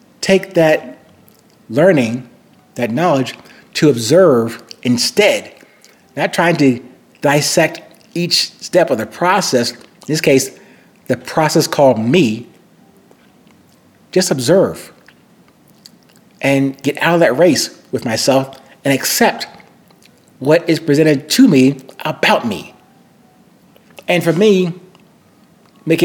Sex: male